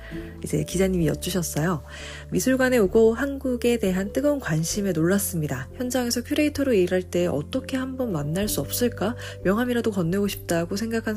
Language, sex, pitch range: Korean, female, 165-235 Hz